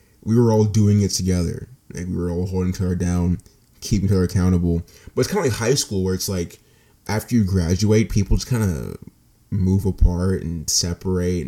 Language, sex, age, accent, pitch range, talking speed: English, male, 20-39, American, 90-105 Hz, 195 wpm